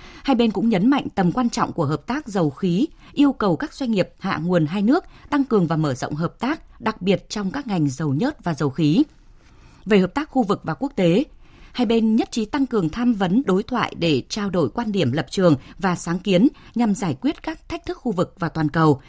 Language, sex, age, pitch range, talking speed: Vietnamese, female, 20-39, 170-245 Hz, 245 wpm